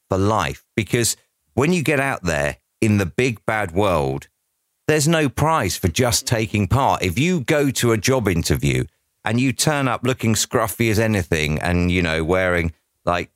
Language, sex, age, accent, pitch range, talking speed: English, male, 40-59, British, 90-125 Hz, 180 wpm